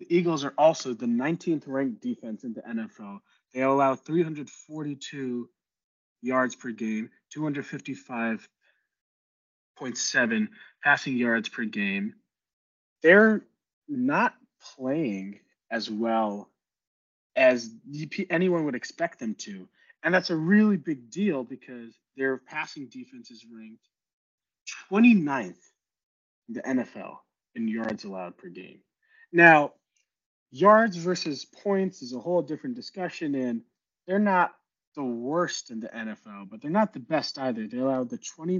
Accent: American